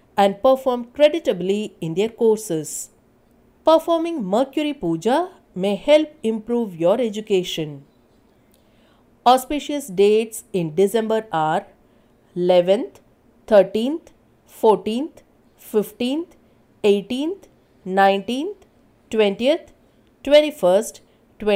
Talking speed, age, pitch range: 75 wpm, 50-69, 195-285 Hz